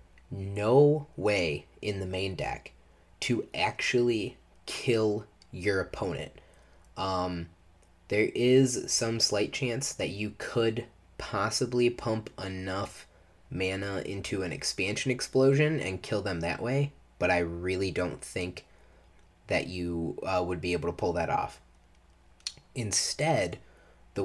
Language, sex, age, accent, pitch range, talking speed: English, male, 20-39, American, 90-120 Hz, 125 wpm